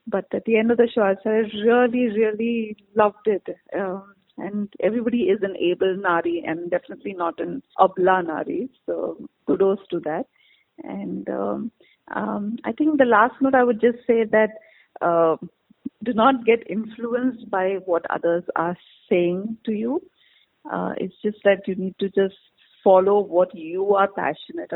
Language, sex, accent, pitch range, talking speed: Hindi, female, native, 175-230 Hz, 165 wpm